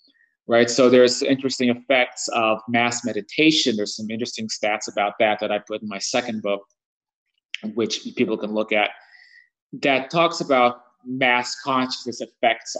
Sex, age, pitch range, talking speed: male, 30-49, 110-135 Hz, 150 wpm